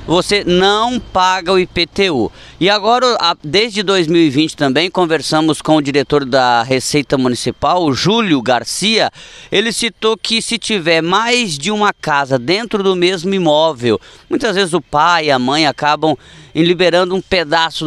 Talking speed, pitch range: 150 wpm, 155-200 Hz